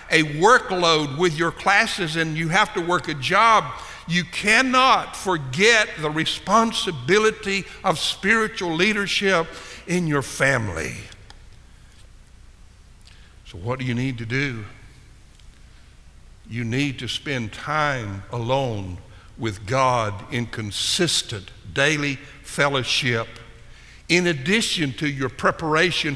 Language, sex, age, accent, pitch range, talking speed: English, male, 60-79, American, 125-185 Hz, 110 wpm